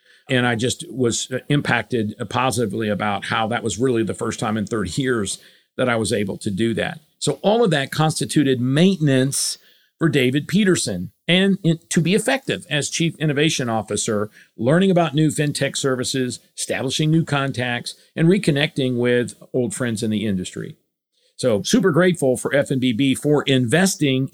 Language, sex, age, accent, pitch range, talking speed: English, male, 50-69, American, 125-165 Hz, 160 wpm